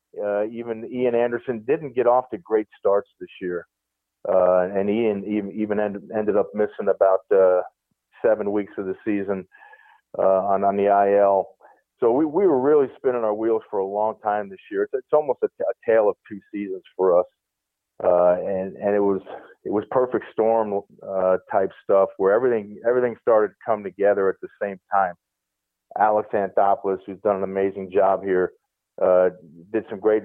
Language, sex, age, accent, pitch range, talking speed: English, male, 40-59, American, 95-120 Hz, 185 wpm